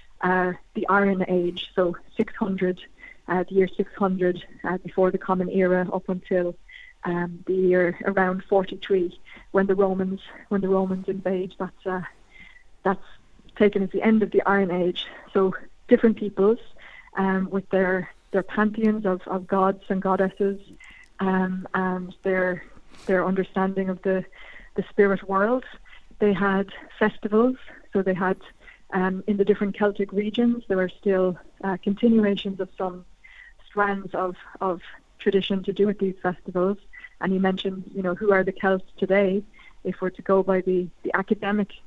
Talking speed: 155 wpm